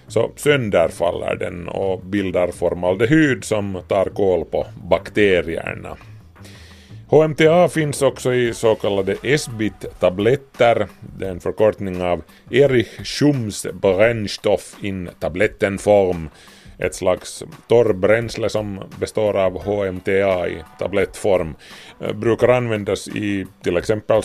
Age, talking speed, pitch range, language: 30-49, 110 wpm, 95-115 Hz, Swedish